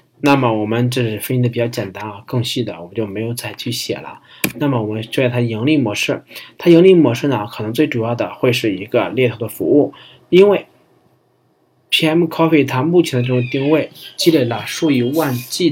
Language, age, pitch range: Chinese, 20-39, 115-145 Hz